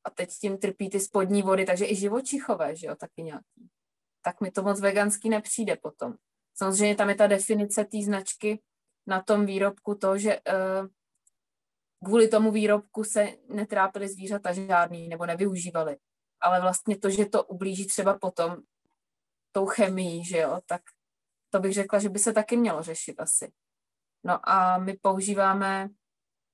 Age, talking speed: 20-39, 160 wpm